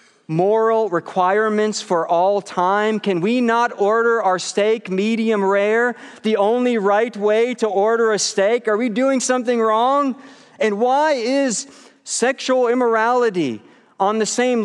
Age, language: 40-59, English